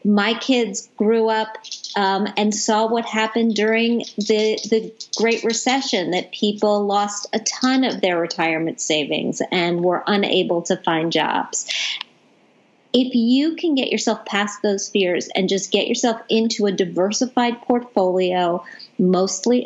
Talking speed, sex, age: 140 wpm, female, 40-59